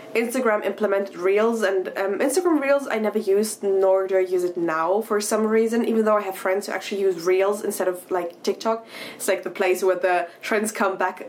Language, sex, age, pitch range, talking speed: English, female, 20-39, 185-220 Hz, 220 wpm